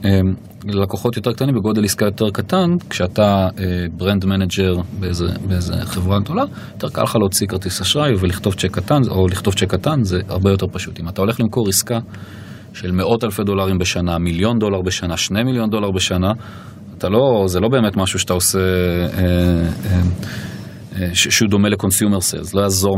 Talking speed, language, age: 165 wpm, Hebrew, 30-49